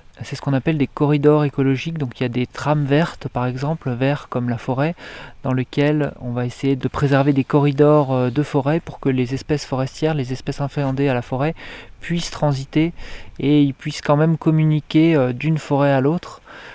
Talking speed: 195 wpm